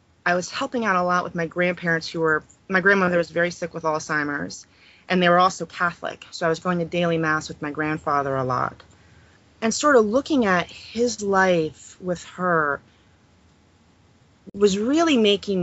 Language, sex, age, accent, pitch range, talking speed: English, female, 30-49, American, 160-200 Hz, 180 wpm